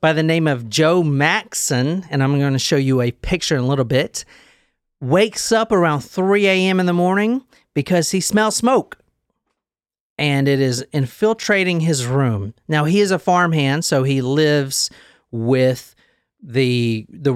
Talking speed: 165 wpm